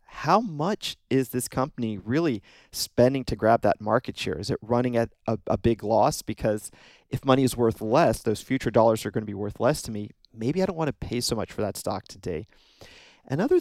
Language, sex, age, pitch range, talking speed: English, male, 40-59, 105-125 Hz, 220 wpm